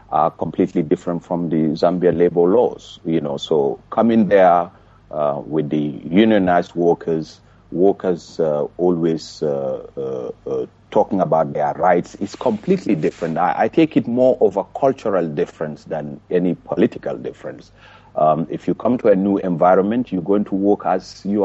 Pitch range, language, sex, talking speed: 85-135 Hz, English, male, 160 wpm